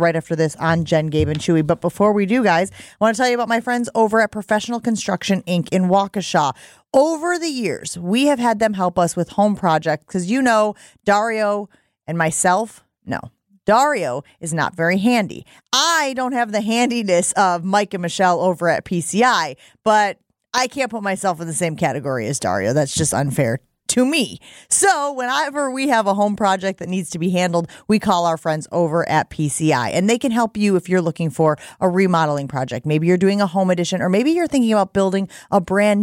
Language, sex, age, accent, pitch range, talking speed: English, female, 30-49, American, 170-230 Hz, 210 wpm